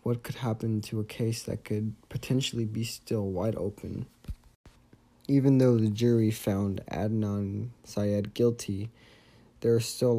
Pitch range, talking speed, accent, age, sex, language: 105-115 Hz, 145 wpm, American, 20-39, male, English